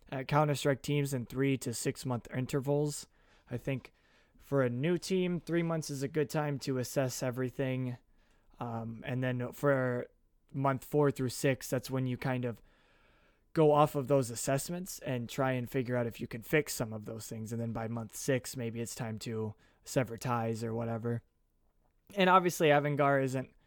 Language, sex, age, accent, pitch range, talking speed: English, male, 20-39, American, 120-140 Hz, 180 wpm